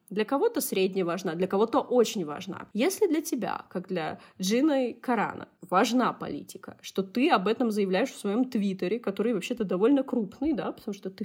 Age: 20-39